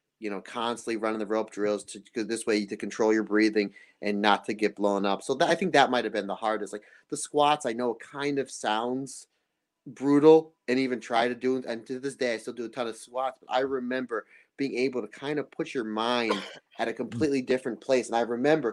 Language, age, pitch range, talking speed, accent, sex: English, 30-49, 110-130 Hz, 235 wpm, American, male